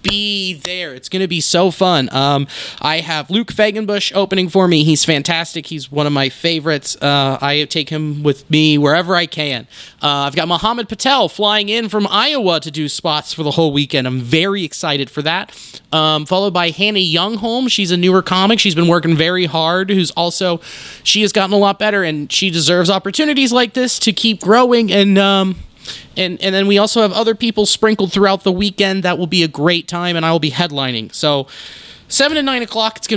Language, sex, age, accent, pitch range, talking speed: English, male, 30-49, American, 160-210 Hz, 210 wpm